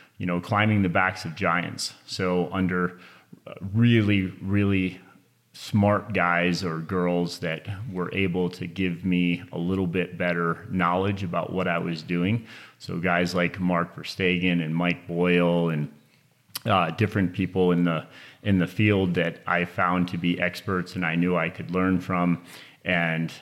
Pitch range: 85-95 Hz